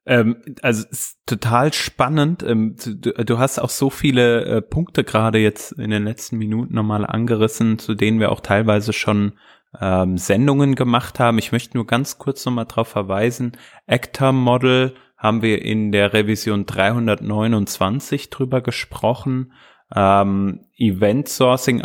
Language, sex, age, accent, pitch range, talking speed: German, male, 20-39, German, 105-120 Hz, 140 wpm